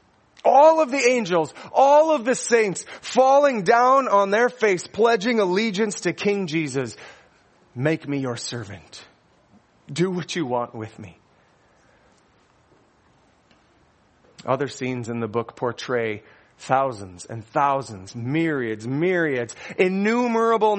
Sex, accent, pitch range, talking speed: male, American, 140-225 Hz, 115 wpm